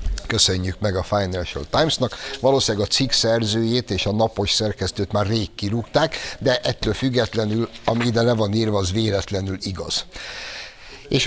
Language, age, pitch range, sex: Hungarian, 60-79, 95-125 Hz, male